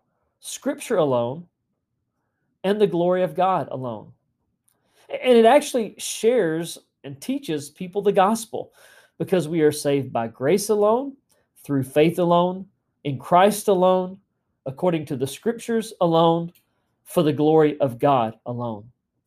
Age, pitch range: 40-59, 135-205 Hz